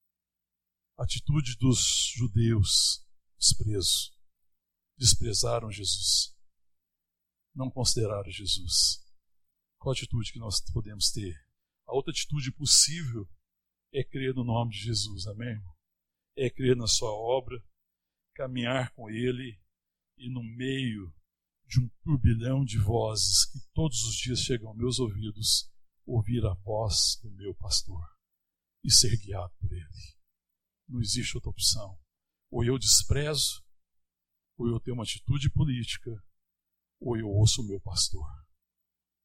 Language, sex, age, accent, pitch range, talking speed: Portuguese, male, 60-79, Brazilian, 75-125 Hz, 125 wpm